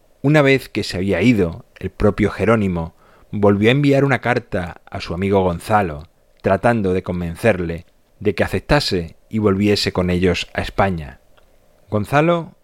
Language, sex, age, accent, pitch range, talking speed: Spanish, male, 30-49, Spanish, 90-115 Hz, 145 wpm